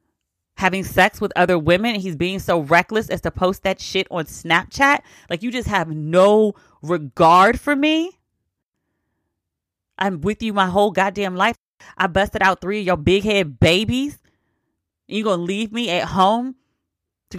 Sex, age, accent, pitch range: female, 30-49, American, 185-250 Hz